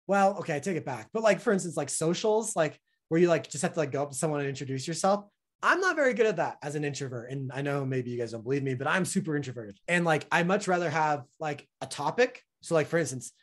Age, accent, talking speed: 30-49, American, 275 wpm